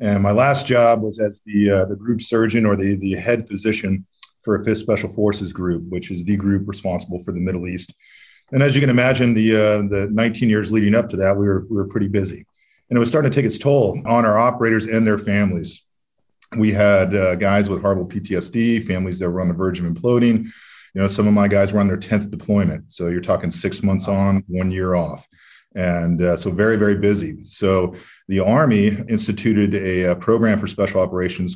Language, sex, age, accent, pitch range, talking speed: English, male, 40-59, American, 95-110 Hz, 220 wpm